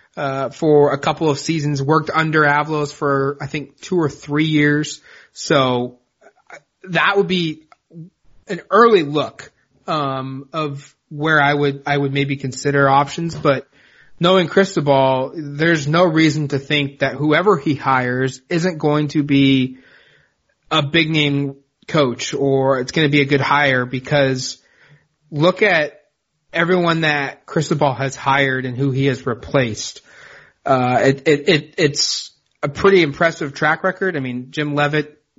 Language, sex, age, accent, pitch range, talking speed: English, male, 30-49, American, 135-155 Hz, 150 wpm